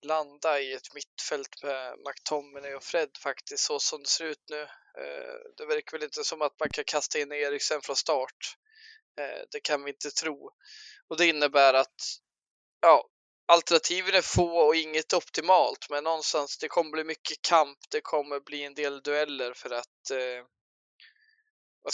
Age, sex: 20-39, male